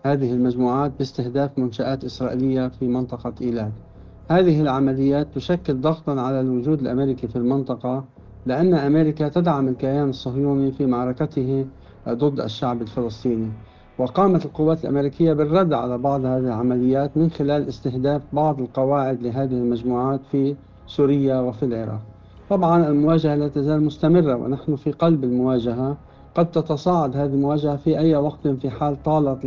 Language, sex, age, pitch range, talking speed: Arabic, male, 60-79, 125-150 Hz, 130 wpm